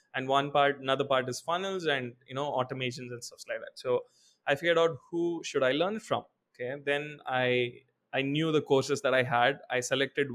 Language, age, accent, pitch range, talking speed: English, 20-39, Indian, 130-155 Hz, 210 wpm